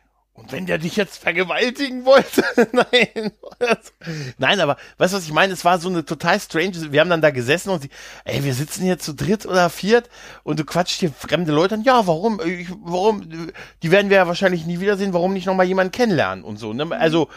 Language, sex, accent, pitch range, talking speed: German, male, German, 150-200 Hz, 220 wpm